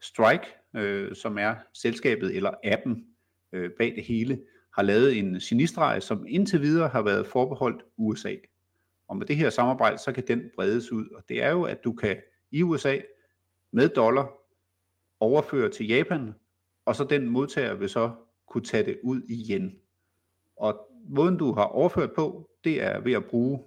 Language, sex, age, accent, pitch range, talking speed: Danish, male, 50-69, native, 105-145 Hz, 170 wpm